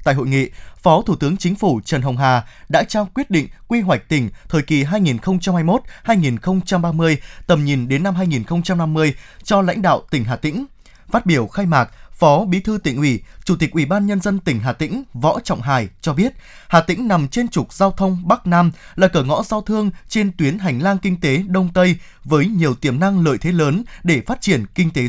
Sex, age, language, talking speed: male, 20-39, Vietnamese, 215 wpm